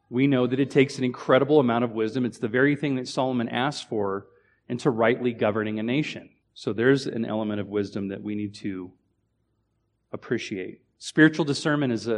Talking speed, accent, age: 180 wpm, American, 30-49